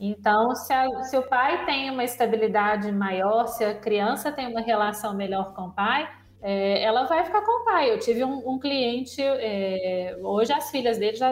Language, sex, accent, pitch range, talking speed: Portuguese, female, Brazilian, 205-265 Hz, 185 wpm